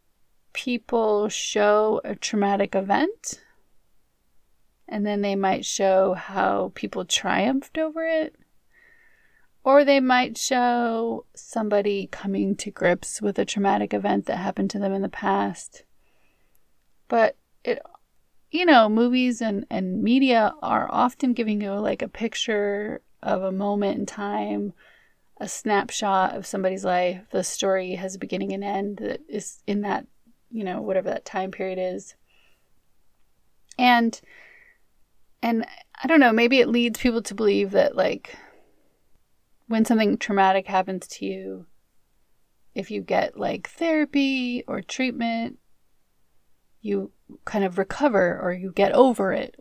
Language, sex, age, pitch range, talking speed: English, female, 30-49, 190-250 Hz, 135 wpm